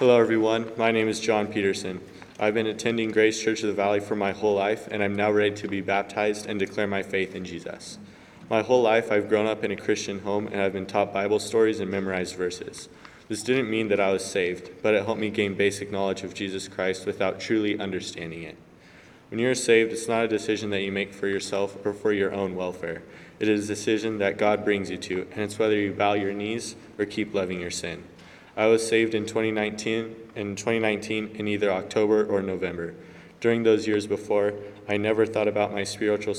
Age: 20-39